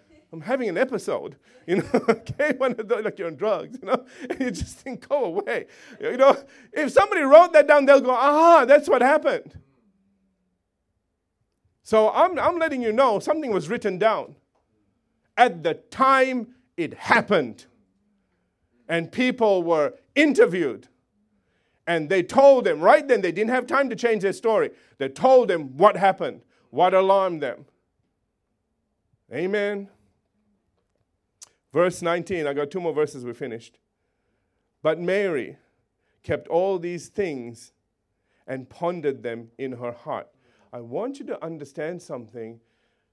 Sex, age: male, 50-69